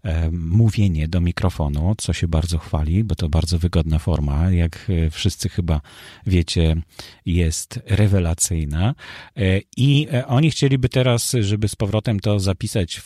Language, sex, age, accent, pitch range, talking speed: Polish, male, 40-59, native, 90-115 Hz, 130 wpm